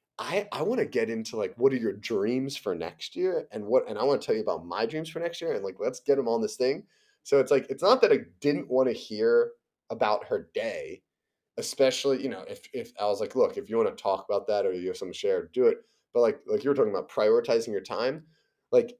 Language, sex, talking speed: English, male, 265 wpm